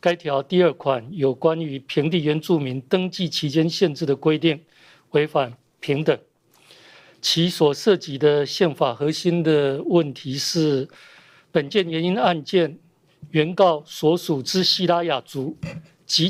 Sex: male